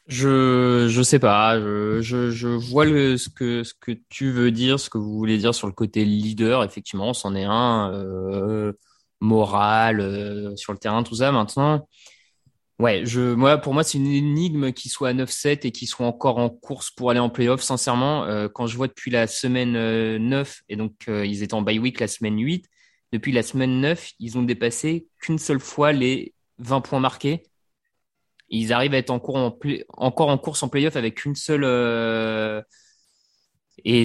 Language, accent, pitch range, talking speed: French, French, 110-140 Hz, 190 wpm